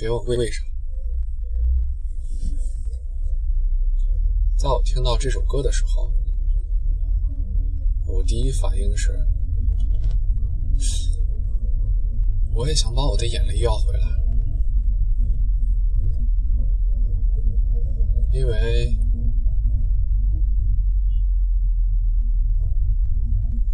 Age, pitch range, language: 20-39, 70-95 Hz, Chinese